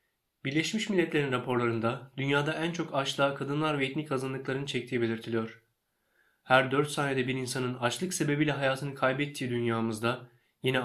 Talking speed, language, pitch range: 135 wpm, Turkish, 125-145 Hz